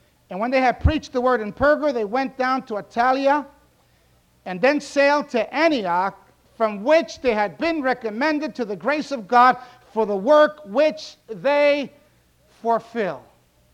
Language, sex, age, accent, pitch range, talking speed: English, male, 60-79, American, 195-290 Hz, 155 wpm